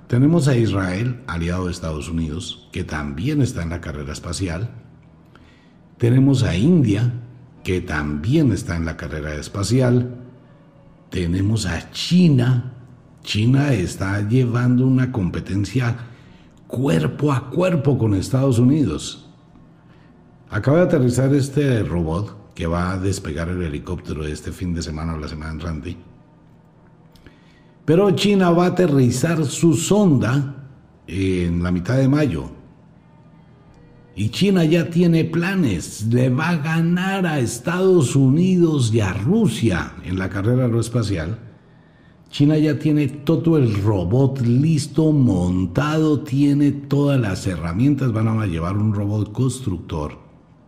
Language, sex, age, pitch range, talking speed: Spanish, male, 60-79, 90-145 Hz, 125 wpm